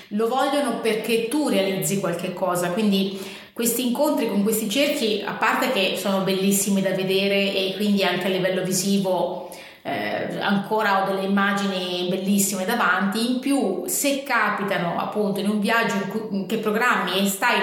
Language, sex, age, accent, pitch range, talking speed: Italian, female, 30-49, native, 190-220 Hz, 155 wpm